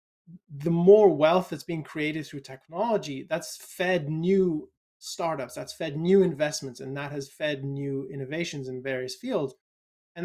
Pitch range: 140-190 Hz